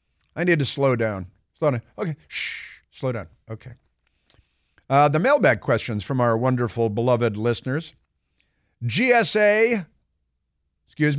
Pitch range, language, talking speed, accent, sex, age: 115-150 Hz, English, 125 wpm, American, male, 50-69